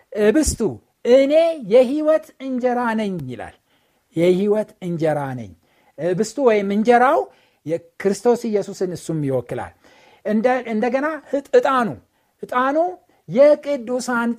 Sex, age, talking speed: male, 60-79, 85 wpm